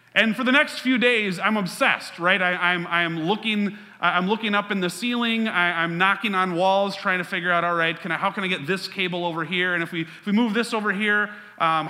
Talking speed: 250 wpm